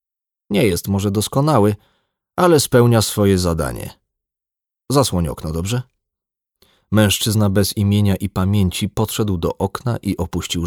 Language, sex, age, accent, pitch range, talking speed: Polish, male, 30-49, native, 80-105 Hz, 120 wpm